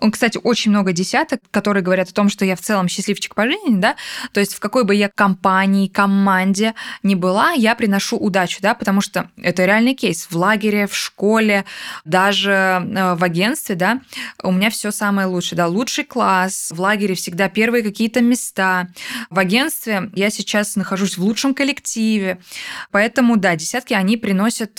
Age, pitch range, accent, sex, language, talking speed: 20-39, 190-230 Hz, native, female, Russian, 170 wpm